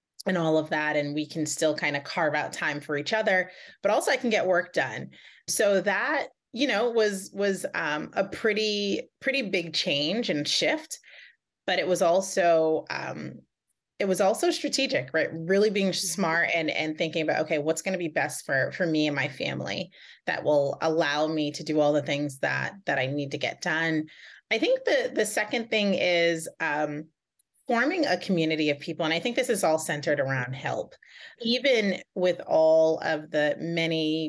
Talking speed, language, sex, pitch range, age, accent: 195 wpm, English, female, 150-195 Hz, 30-49, American